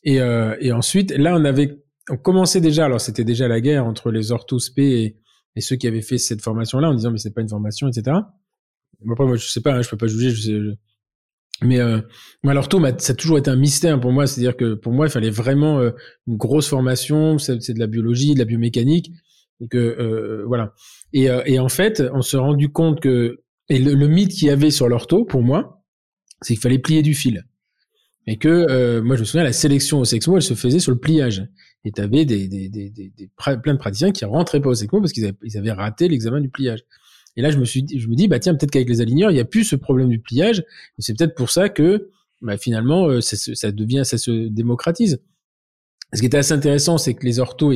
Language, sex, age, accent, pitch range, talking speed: French, male, 20-39, French, 115-145 Hz, 245 wpm